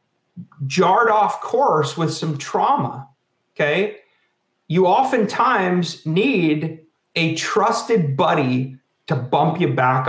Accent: American